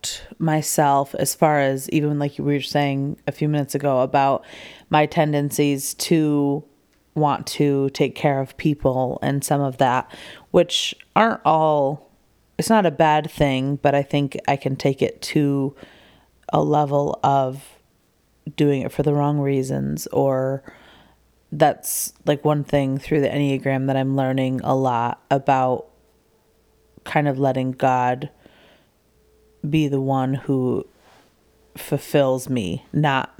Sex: female